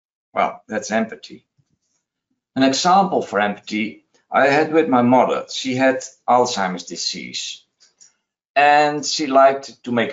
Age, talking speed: 60-79, 125 wpm